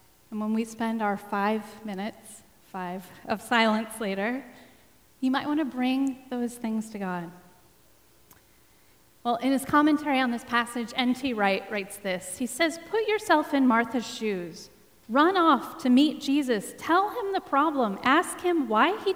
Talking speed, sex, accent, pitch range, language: 160 wpm, female, American, 210-275 Hz, English